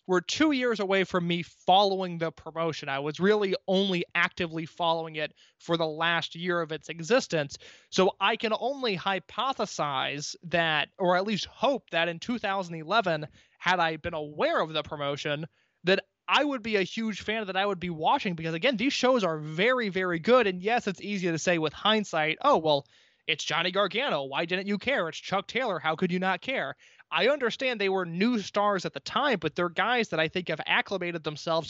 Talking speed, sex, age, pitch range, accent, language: 200 wpm, male, 20-39, 165-210 Hz, American, English